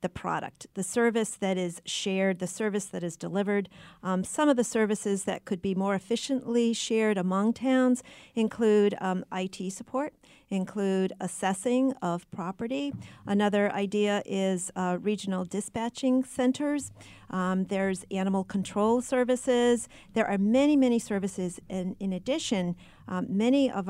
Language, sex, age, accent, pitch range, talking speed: English, female, 40-59, American, 190-230 Hz, 140 wpm